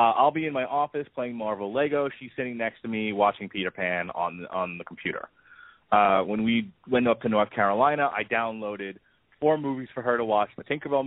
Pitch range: 105-130 Hz